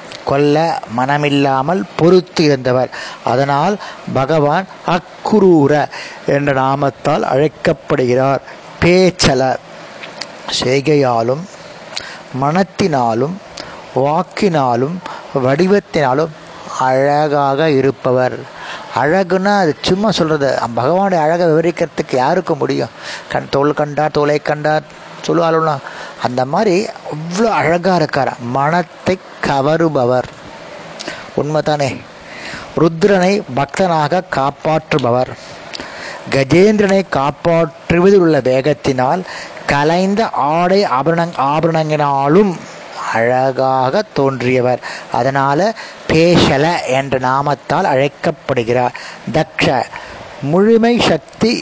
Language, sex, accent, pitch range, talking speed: Tamil, male, native, 135-175 Hz, 70 wpm